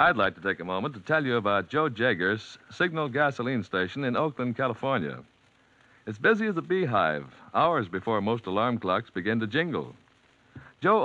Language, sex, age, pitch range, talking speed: English, male, 60-79, 100-155 Hz, 175 wpm